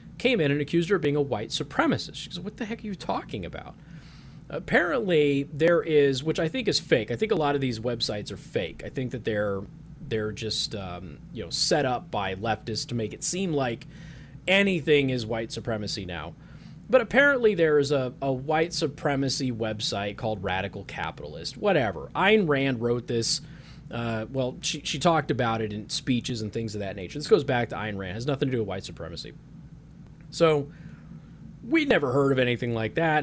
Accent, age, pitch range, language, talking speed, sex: American, 30-49, 125-165 Hz, English, 200 wpm, male